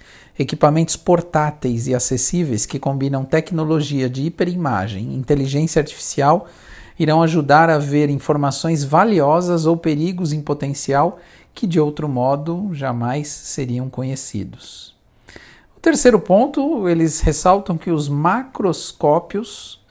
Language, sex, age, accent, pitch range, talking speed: Portuguese, male, 50-69, Brazilian, 130-165 Hz, 110 wpm